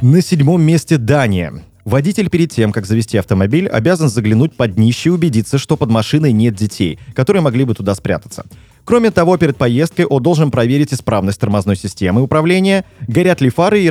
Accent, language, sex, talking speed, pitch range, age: native, Russian, male, 175 wpm, 110-160 Hz, 30-49